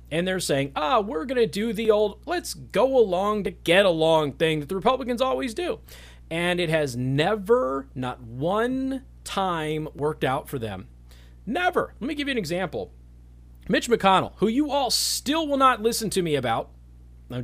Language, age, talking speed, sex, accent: English, 30-49, 180 wpm, male, American